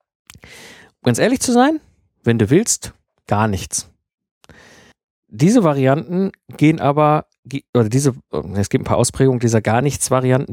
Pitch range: 120-155 Hz